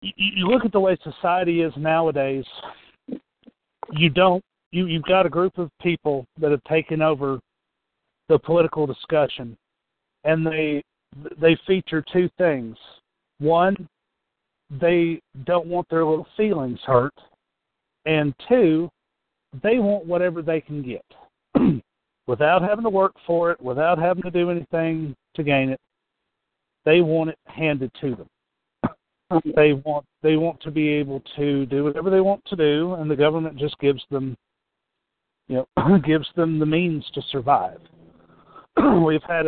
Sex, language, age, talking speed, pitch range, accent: male, English, 50-69, 145 wpm, 145-175 Hz, American